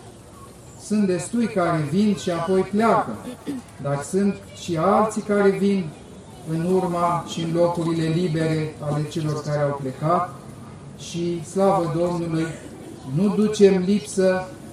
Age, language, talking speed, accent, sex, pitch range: 40-59, Romanian, 120 wpm, native, male, 145-180 Hz